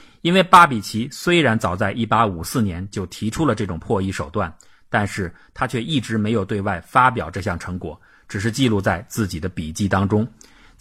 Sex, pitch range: male, 95-120 Hz